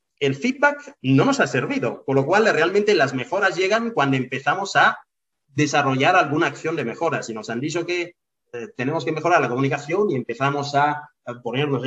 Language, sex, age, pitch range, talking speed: Spanish, male, 30-49, 135-225 Hz, 185 wpm